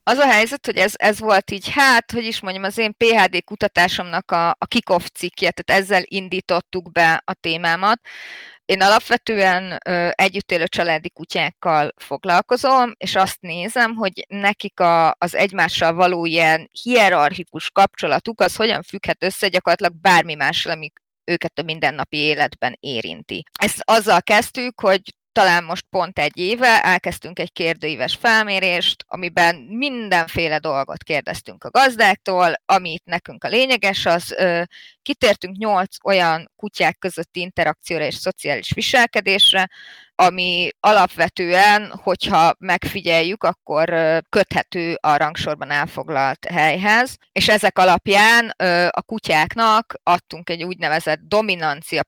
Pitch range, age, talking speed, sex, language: 165-200 Hz, 30-49, 125 wpm, female, Hungarian